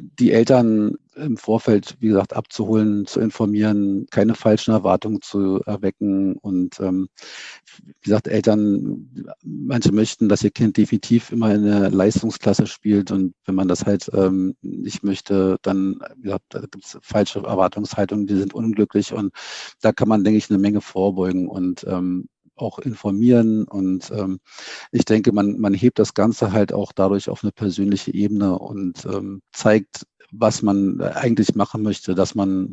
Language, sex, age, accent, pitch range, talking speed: German, male, 50-69, German, 95-110 Hz, 155 wpm